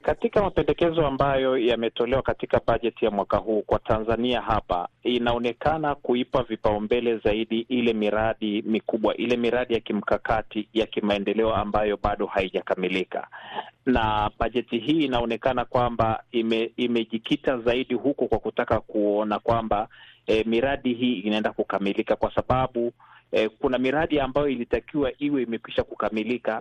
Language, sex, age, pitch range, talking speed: Swahili, male, 30-49, 110-135 Hz, 125 wpm